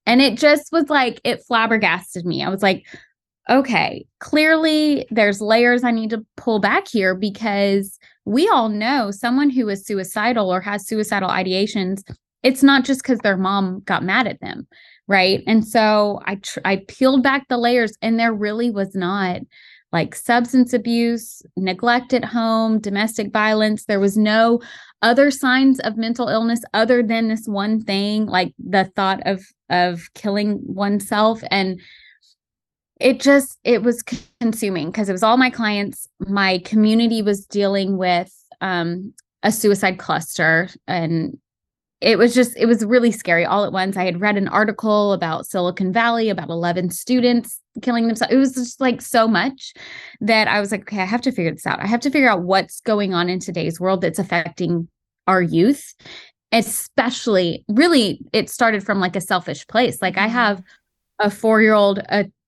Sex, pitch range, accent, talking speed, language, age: female, 190-235 Hz, American, 170 wpm, English, 20-39